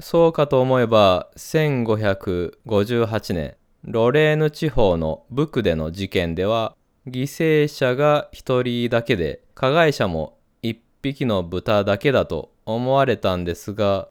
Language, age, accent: Japanese, 20-39, native